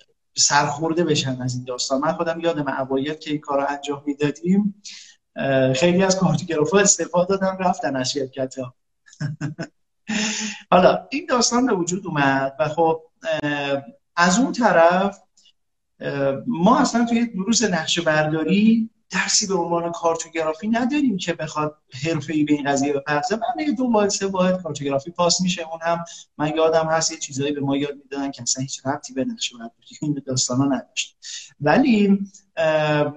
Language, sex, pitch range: Persian, male, 145-195 Hz